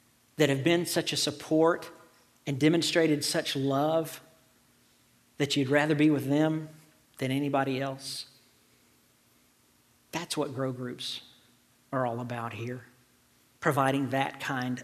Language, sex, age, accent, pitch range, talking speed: English, male, 50-69, American, 130-170 Hz, 120 wpm